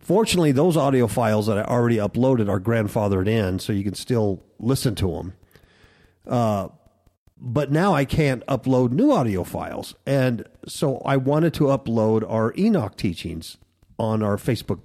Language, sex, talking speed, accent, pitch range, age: English, male, 160 wpm, American, 105-145 Hz, 50-69